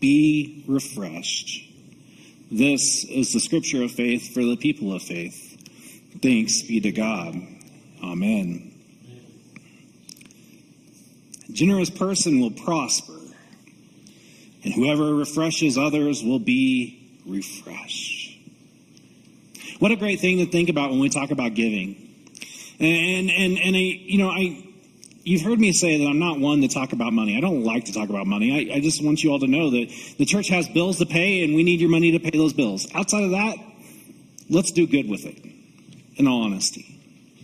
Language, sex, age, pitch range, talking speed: English, male, 40-59, 150-190 Hz, 165 wpm